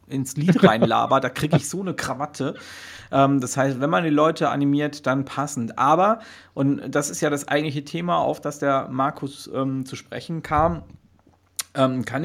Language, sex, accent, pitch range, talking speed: German, male, German, 130-150 Hz, 180 wpm